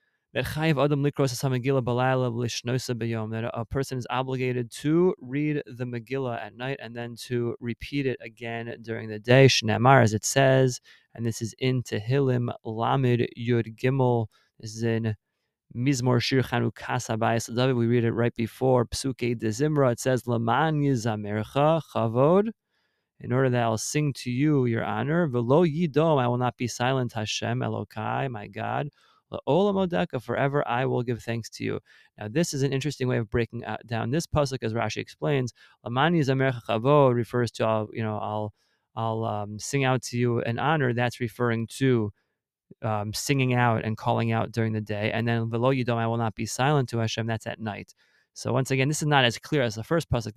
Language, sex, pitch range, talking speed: English, male, 115-135 Hz, 160 wpm